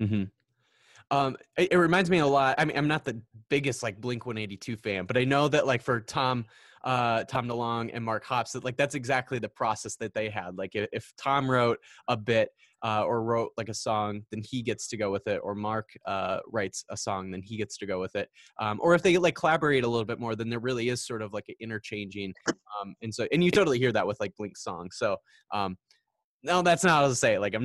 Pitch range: 110-150 Hz